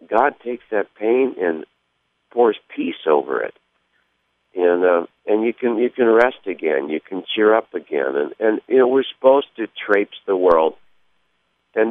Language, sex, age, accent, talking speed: English, male, 50-69, American, 170 wpm